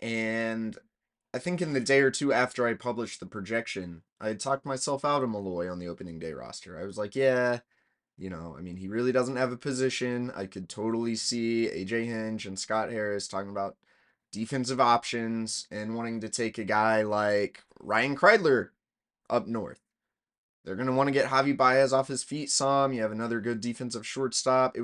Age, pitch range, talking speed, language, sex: 20-39, 110-140 Hz, 200 wpm, English, male